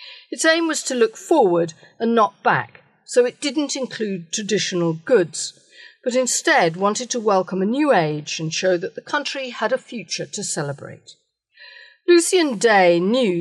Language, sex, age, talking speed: English, female, 50-69, 160 wpm